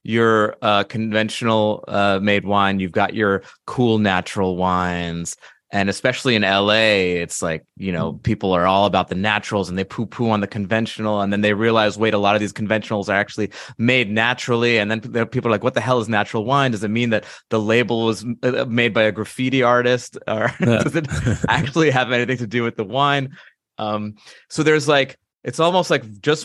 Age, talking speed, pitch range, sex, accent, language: 30-49, 200 wpm, 100-125 Hz, male, American, English